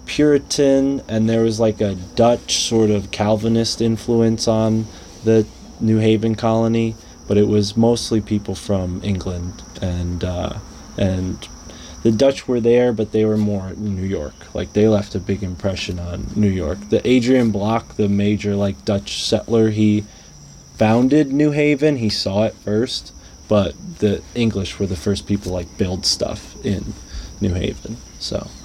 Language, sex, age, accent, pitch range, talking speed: English, male, 20-39, American, 95-110 Hz, 155 wpm